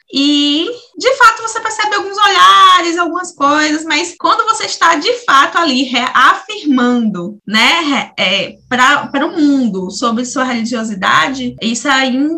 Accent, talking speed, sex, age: Brazilian, 120 wpm, female, 10-29